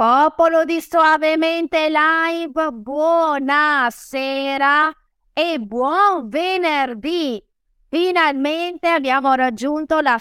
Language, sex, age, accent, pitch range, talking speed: Italian, female, 20-39, native, 220-310 Hz, 70 wpm